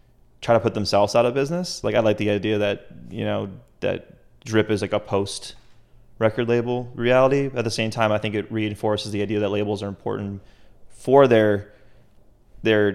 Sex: male